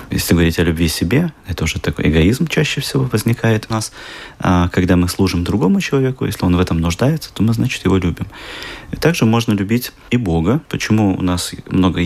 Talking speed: 200 wpm